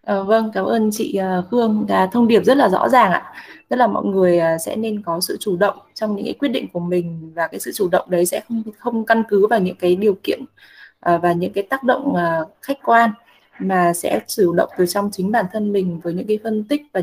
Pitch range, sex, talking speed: 180-230 Hz, female, 260 wpm